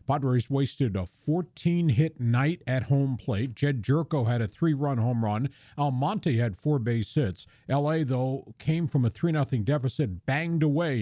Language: English